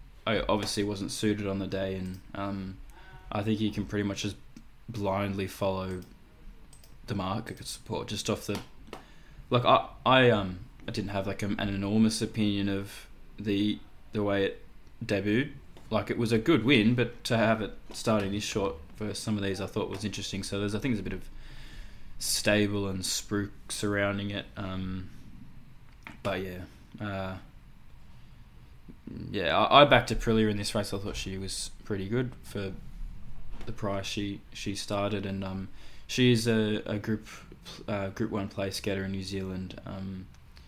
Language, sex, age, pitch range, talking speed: English, male, 20-39, 95-110 Hz, 170 wpm